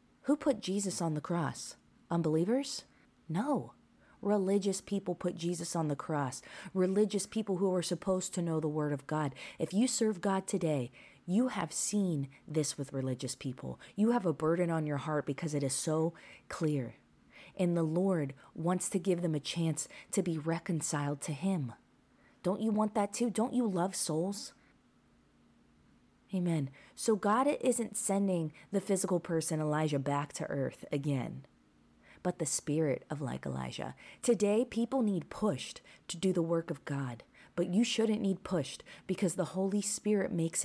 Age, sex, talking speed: 30-49, female, 165 wpm